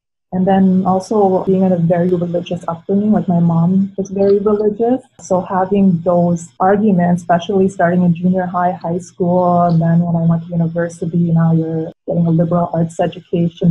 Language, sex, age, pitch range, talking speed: English, female, 20-39, 175-200 Hz, 175 wpm